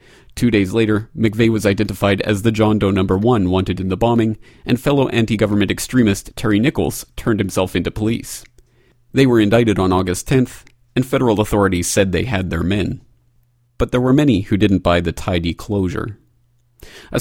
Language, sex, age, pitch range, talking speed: English, male, 40-59, 90-120 Hz, 180 wpm